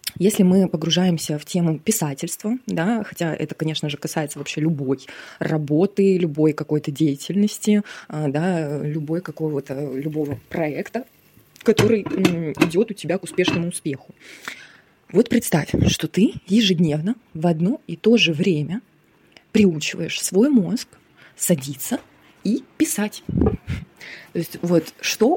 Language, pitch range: Russian, 155-195 Hz